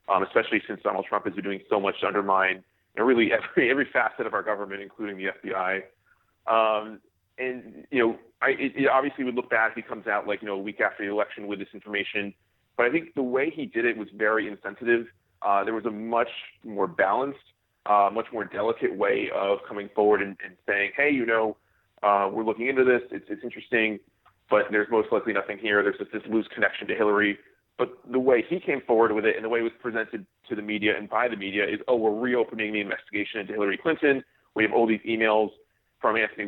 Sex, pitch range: male, 100-125 Hz